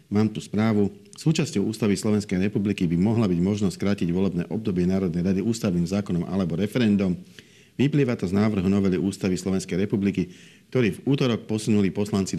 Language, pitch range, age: Slovak, 95-110 Hz, 50-69